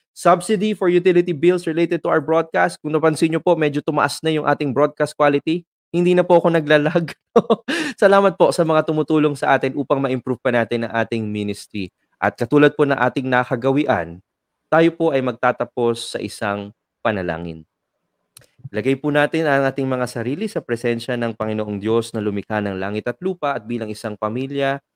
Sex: male